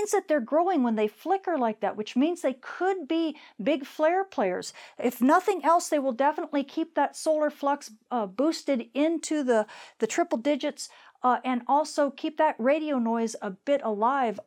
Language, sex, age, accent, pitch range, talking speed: English, female, 50-69, American, 210-285 Hz, 180 wpm